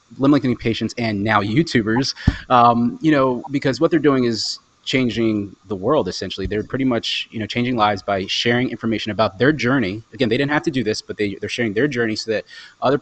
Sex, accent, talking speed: male, American, 210 wpm